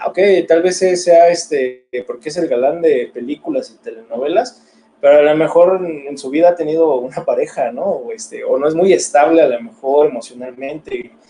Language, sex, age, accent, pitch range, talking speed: Spanish, male, 20-39, Mexican, 150-210 Hz, 185 wpm